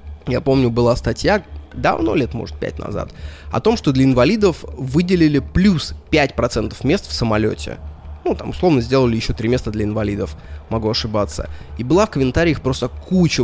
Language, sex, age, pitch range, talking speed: Russian, male, 20-39, 95-135 Hz, 165 wpm